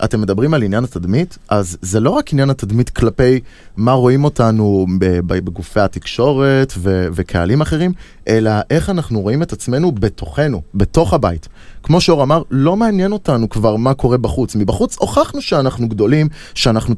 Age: 20-39